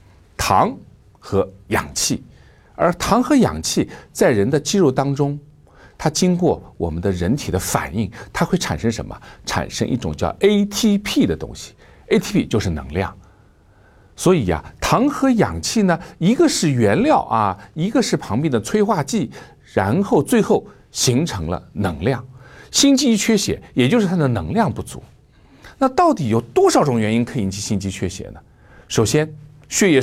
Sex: male